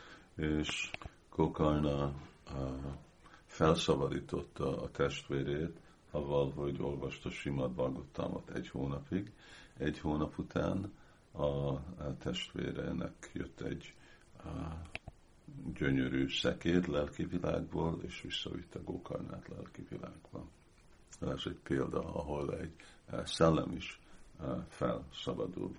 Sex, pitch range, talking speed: male, 70-85 Hz, 80 wpm